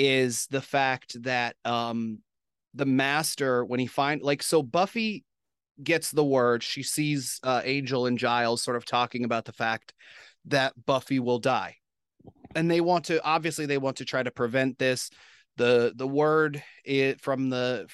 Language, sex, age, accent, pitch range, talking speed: English, male, 30-49, American, 120-145 Hz, 165 wpm